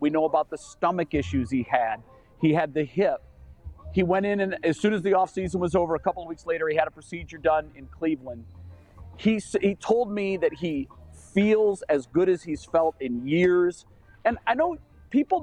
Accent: American